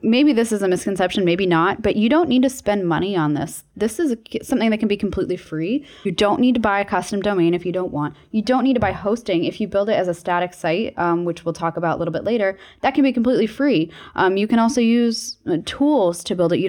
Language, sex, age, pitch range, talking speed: English, female, 10-29, 175-225 Hz, 270 wpm